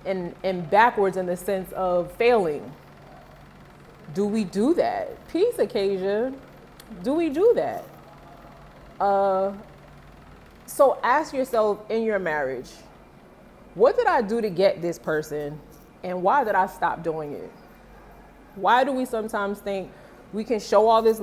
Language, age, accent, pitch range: English, 20-39, American, 180-225 Hz